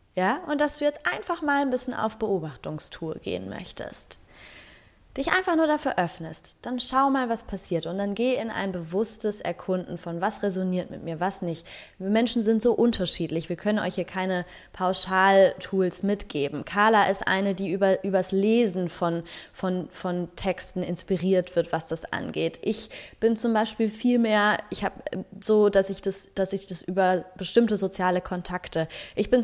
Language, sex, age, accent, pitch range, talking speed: German, female, 20-39, German, 180-225 Hz, 175 wpm